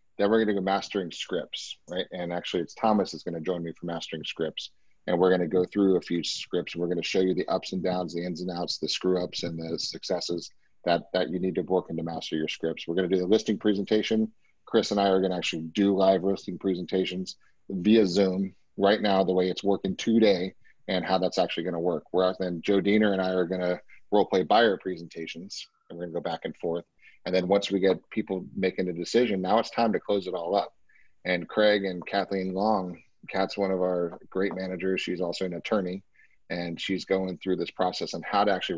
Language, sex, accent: English, male, American